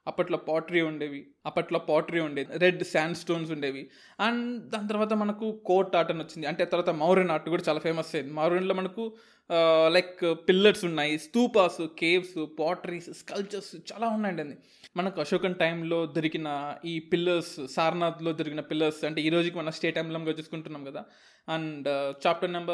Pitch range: 155-180 Hz